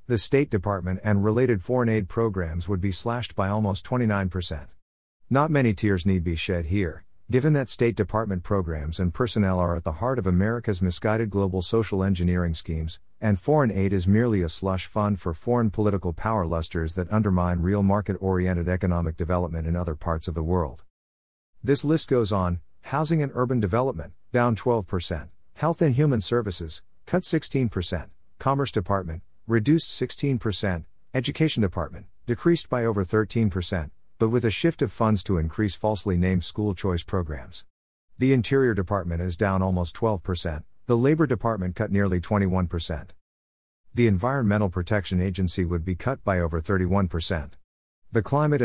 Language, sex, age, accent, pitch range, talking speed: English, male, 50-69, American, 85-115 Hz, 160 wpm